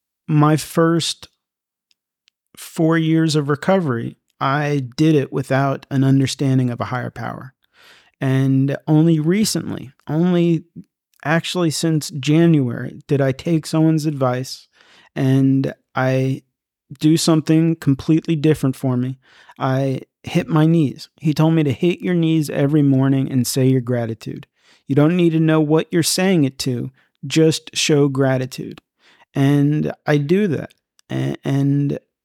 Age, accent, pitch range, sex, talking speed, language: 40-59, American, 135-160 Hz, male, 130 wpm, English